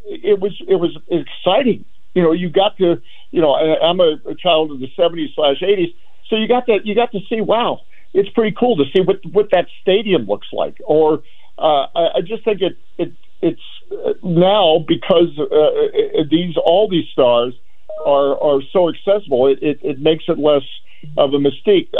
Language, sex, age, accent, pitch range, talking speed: English, male, 50-69, American, 140-195 Hz, 195 wpm